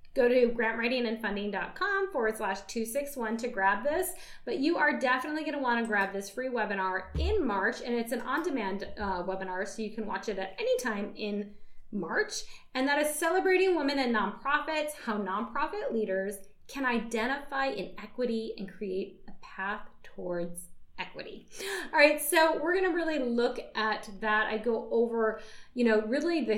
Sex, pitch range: female, 205-265 Hz